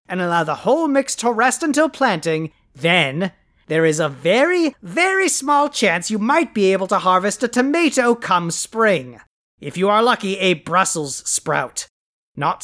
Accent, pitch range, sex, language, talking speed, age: American, 155-240 Hz, male, English, 165 wpm, 30-49